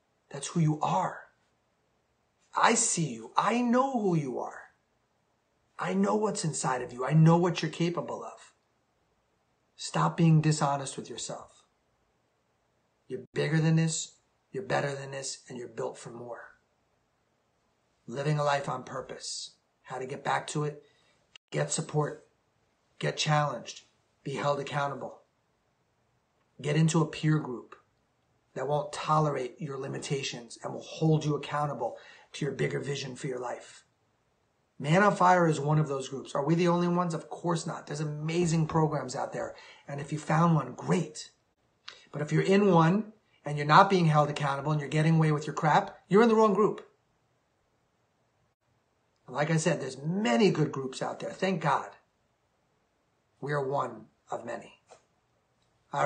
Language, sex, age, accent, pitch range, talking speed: English, male, 30-49, American, 140-175 Hz, 160 wpm